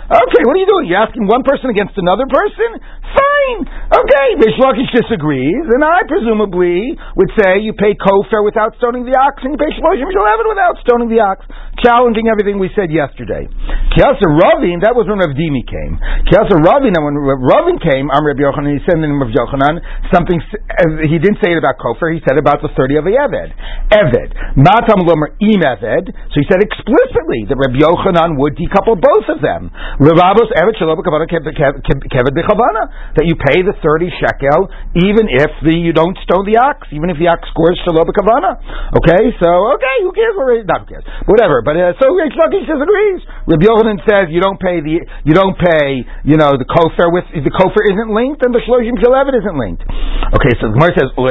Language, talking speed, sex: English, 180 wpm, male